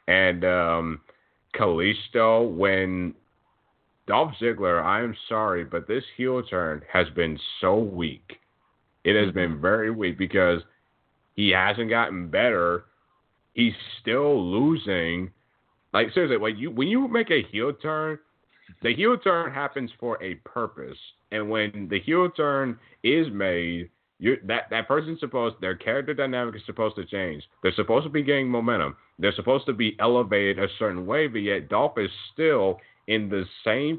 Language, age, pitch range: English, 30-49, 100-135 Hz